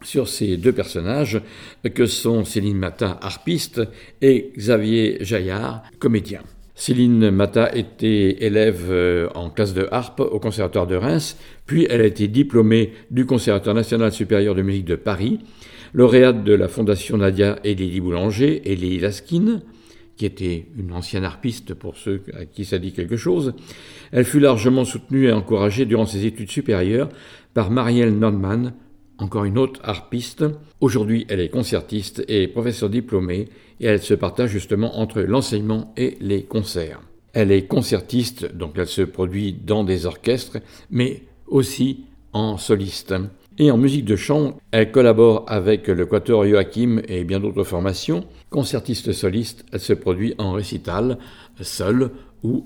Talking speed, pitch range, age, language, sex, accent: 150 wpm, 100-120 Hz, 50-69, French, male, French